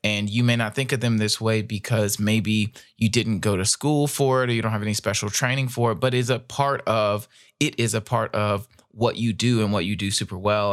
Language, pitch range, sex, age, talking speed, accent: English, 105-125 Hz, male, 20-39, 235 wpm, American